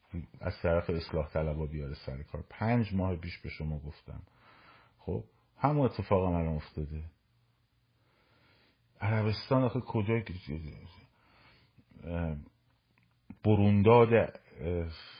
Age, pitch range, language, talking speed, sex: 50-69, 90-120 Hz, Persian, 90 wpm, male